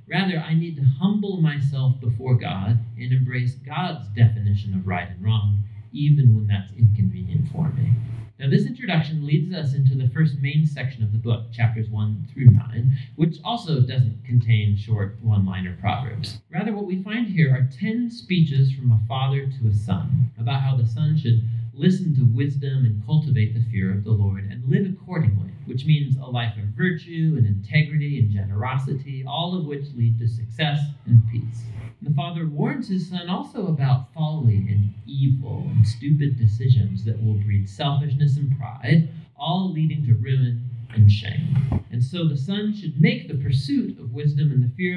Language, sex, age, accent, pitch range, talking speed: English, male, 40-59, American, 115-155 Hz, 180 wpm